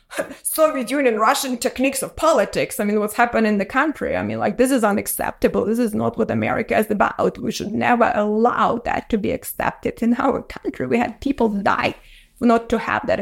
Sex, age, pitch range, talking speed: female, 20-39, 230-280 Hz, 205 wpm